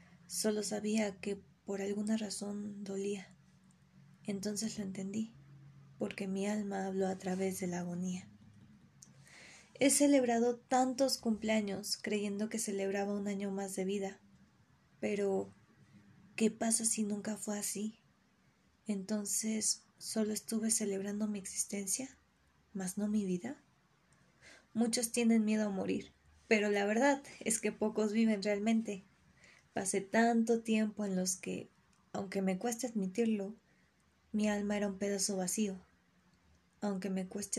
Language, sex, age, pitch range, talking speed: Spanish, female, 20-39, 190-220 Hz, 130 wpm